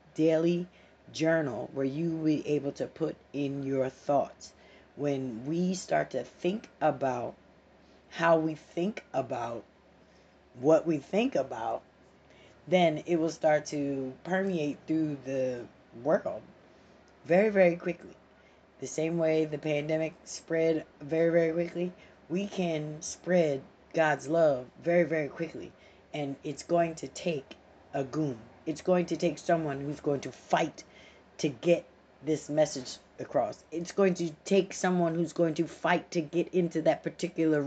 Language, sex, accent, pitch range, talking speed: English, female, American, 145-175 Hz, 145 wpm